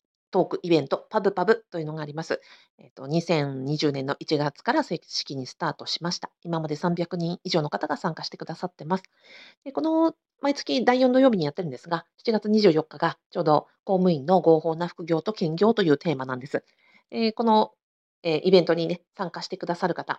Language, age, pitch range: Japanese, 40-59, 150-215 Hz